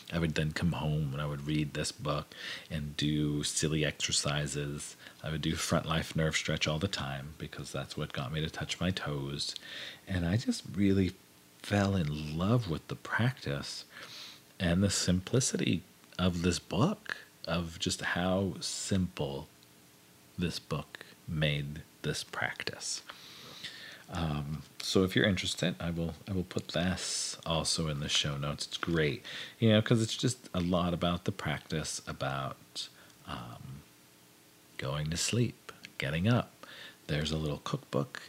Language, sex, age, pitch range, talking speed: English, male, 40-59, 70-95 Hz, 155 wpm